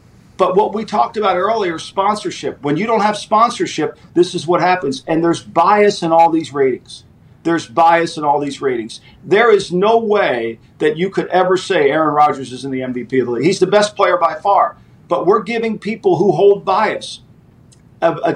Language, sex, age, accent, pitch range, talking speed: English, male, 50-69, American, 170-235 Hz, 200 wpm